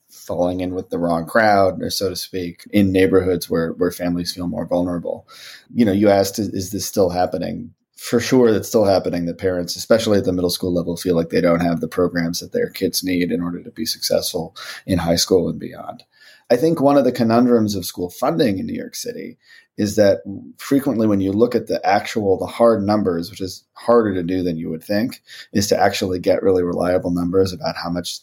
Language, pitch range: English, 90-110 Hz